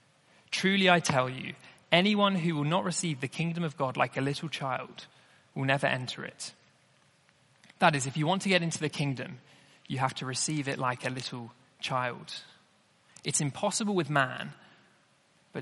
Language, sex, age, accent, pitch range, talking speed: English, male, 20-39, British, 140-185 Hz, 175 wpm